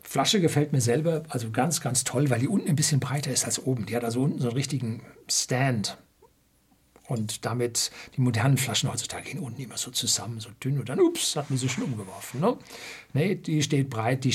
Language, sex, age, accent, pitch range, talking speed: German, male, 60-79, German, 115-135 Hz, 220 wpm